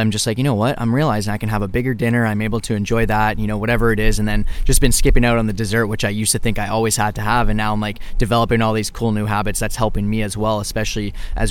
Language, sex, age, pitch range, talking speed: English, male, 20-39, 110-120 Hz, 315 wpm